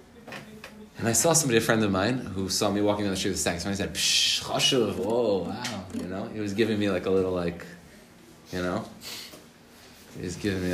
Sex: male